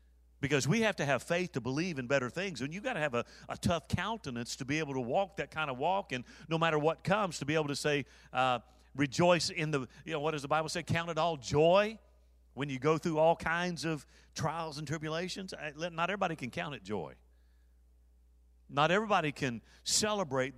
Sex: male